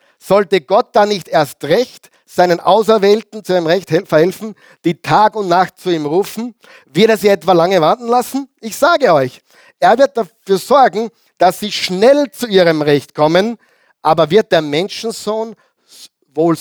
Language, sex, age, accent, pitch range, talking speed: German, male, 50-69, German, 155-220 Hz, 165 wpm